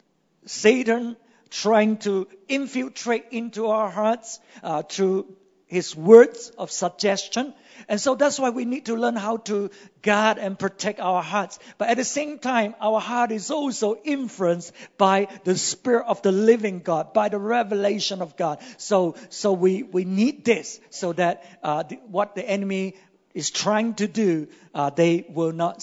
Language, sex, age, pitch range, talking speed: English, male, 50-69, 185-245 Hz, 165 wpm